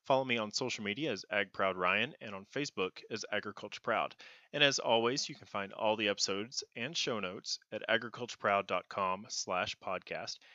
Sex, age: male, 30-49